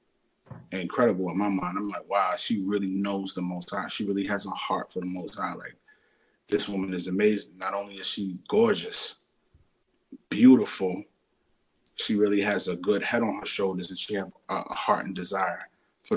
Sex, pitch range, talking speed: male, 95-105 Hz, 185 wpm